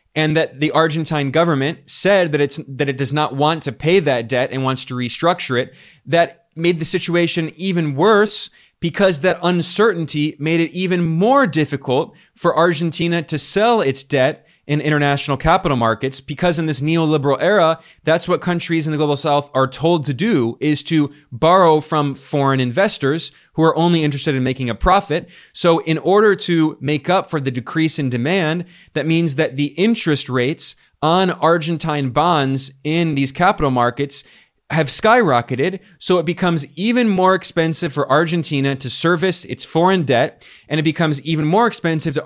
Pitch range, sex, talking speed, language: 145-175 Hz, male, 170 wpm, English